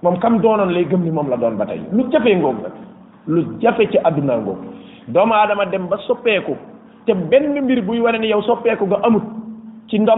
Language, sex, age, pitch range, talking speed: French, male, 30-49, 170-220 Hz, 120 wpm